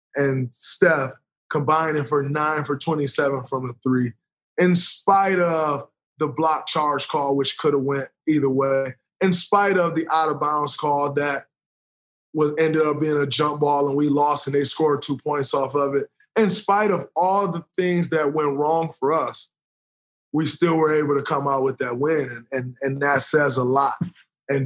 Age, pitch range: 20-39, 135-165 Hz